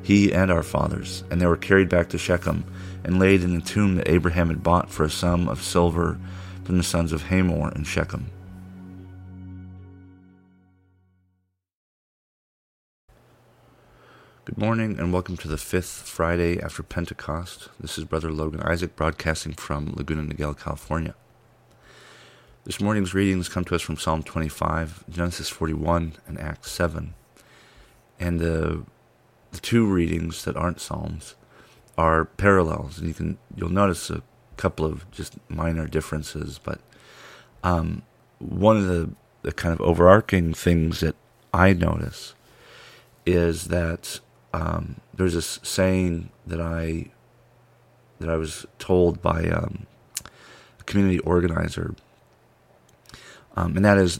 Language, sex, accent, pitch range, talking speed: English, male, American, 80-95 Hz, 135 wpm